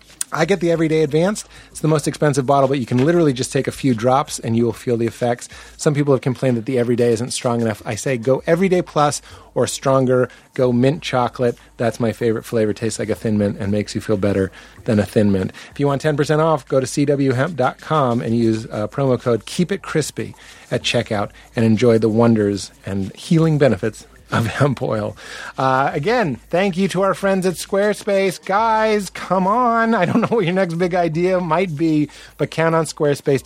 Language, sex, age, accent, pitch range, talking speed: English, male, 30-49, American, 125-165 Hz, 210 wpm